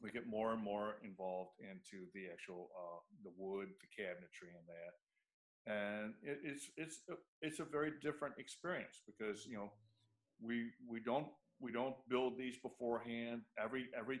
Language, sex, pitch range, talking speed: English, male, 105-130 Hz, 155 wpm